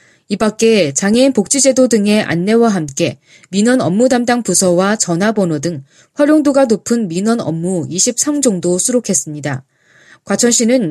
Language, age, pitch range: Korean, 20-39, 170-245 Hz